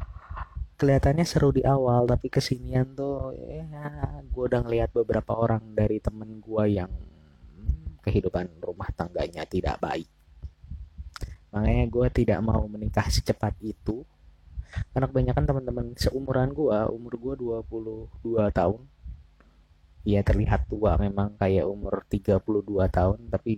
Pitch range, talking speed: 85-115 Hz, 120 wpm